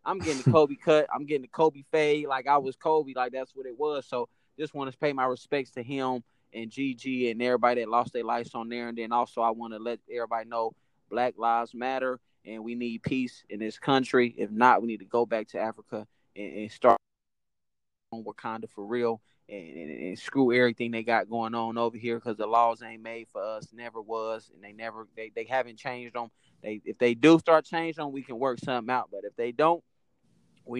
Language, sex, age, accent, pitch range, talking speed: English, male, 20-39, American, 115-145 Hz, 230 wpm